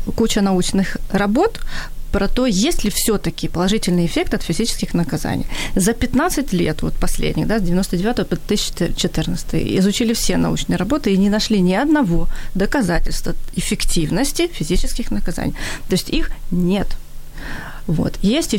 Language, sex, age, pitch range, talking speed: Ukrainian, female, 30-49, 180-245 Hz, 135 wpm